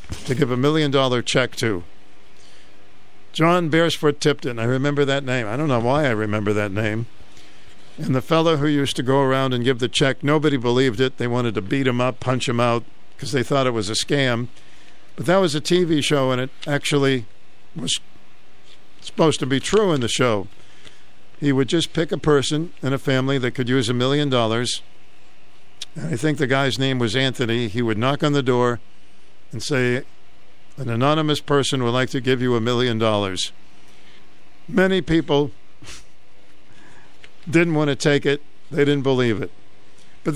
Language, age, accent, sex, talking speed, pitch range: English, 50-69, American, male, 185 wpm, 100-145 Hz